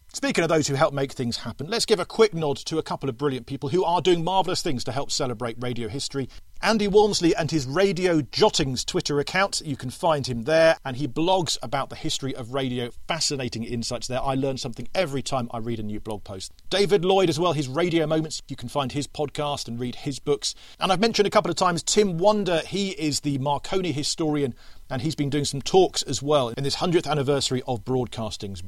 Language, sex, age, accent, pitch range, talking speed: English, male, 40-59, British, 125-175 Hz, 225 wpm